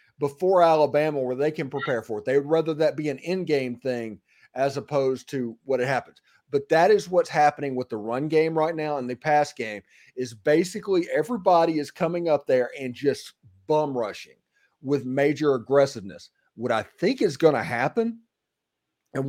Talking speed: 180 wpm